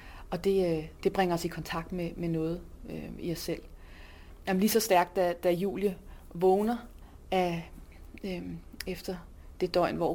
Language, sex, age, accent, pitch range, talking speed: Danish, female, 20-39, native, 155-185 Hz, 165 wpm